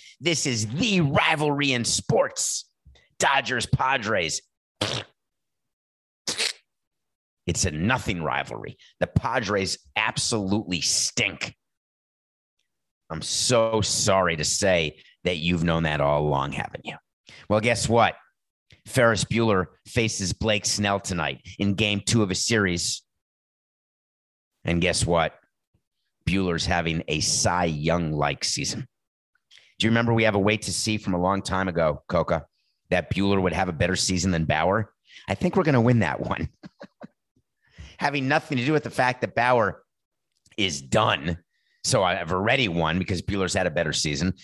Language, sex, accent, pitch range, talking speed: English, male, American, 90-125 Hz, 140 wpm